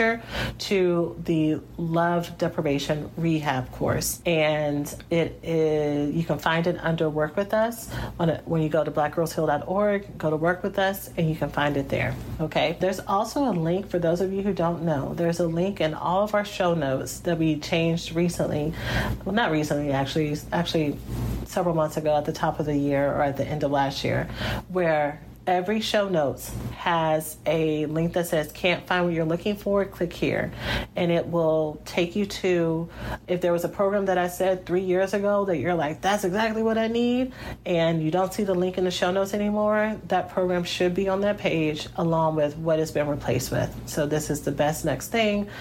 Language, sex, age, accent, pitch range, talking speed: English, female, 40-59, American, 150-185 Hz, 205 wpm